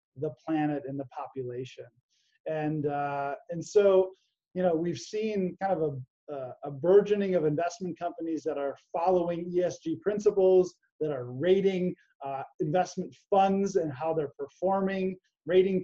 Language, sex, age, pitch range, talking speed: English, male, 20-39, 150-190 Hz, 140 wpm